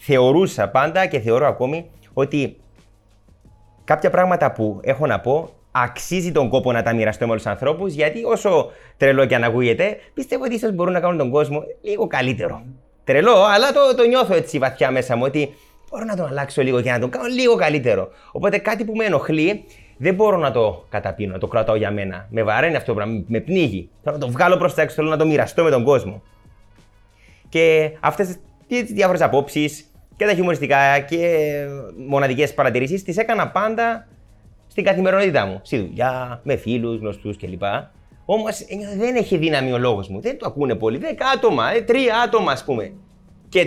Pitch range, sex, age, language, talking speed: 120-195 Hz, male, 20-39, Greek, 180 wpm